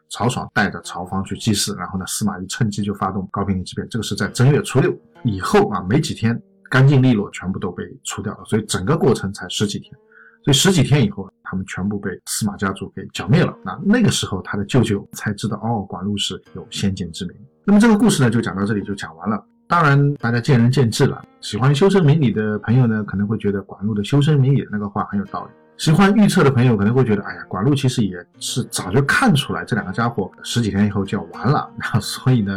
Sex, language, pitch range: male, Chinese, 100-135 Hz